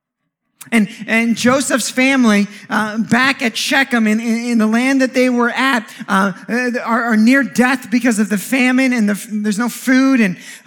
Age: 30-49